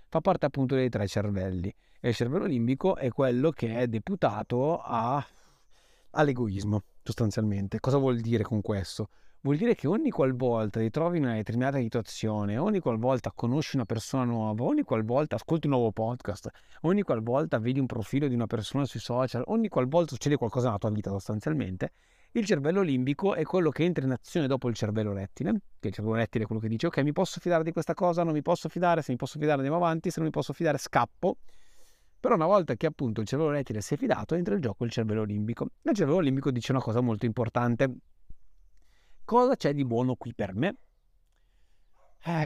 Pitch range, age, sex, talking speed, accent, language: 115-155 Hz, 30-49, male, 195 wpm, native, Italian